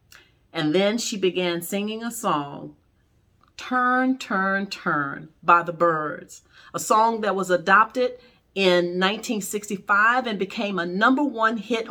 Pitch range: 175-240 Hz